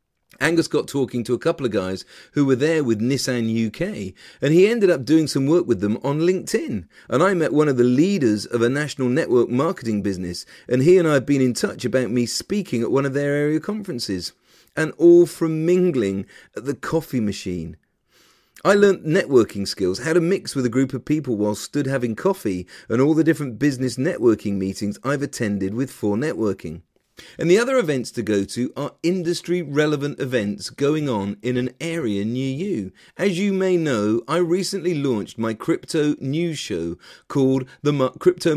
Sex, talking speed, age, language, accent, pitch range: male, 190 wpm, 40-59, English, British, 115-160 Hz